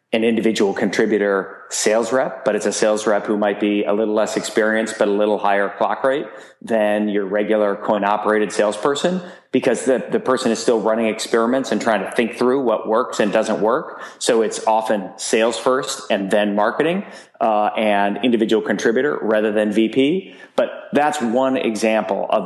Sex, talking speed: male, 175 wpm